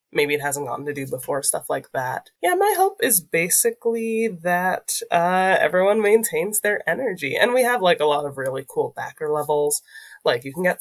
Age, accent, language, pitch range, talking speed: 20-39, American, English, 150-235 Hz, 200 wpm